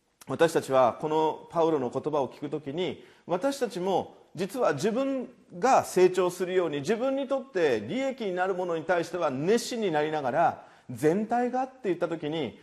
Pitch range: 150-230 Hz